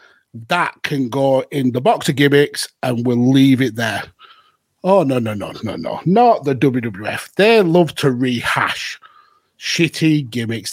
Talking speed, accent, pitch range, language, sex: 155 wpm, British, 130-165 Hz, English, male